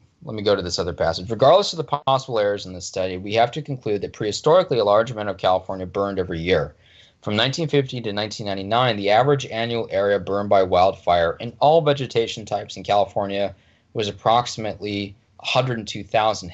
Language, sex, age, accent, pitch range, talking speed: English, male, 20-39, American, 95-125 Hz, 180 wpm